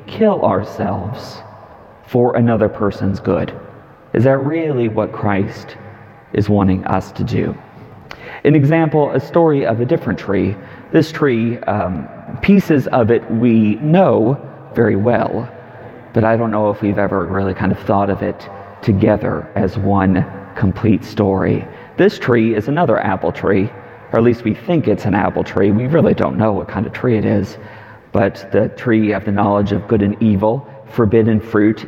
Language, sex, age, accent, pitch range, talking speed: English, male, 40-59, American, 100-120 Hz, 170 wpm